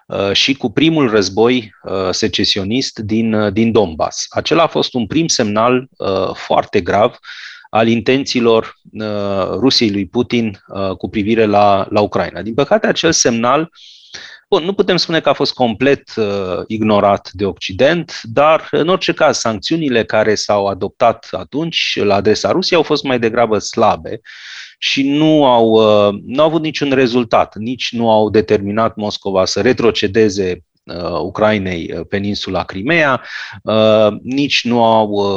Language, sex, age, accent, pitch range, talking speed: Romanian, male, 30-49, native, 100-130 Hz, 130 wpm